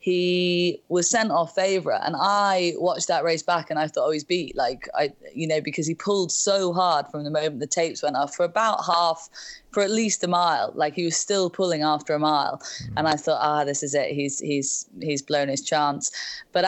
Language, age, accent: English, 20-39, British